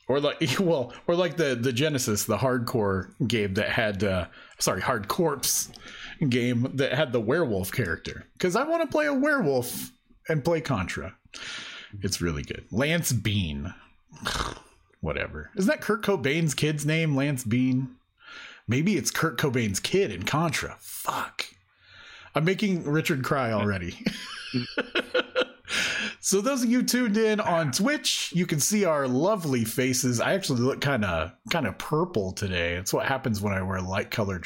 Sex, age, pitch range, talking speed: male, 30-49, 105-165 Hz, 160 wpm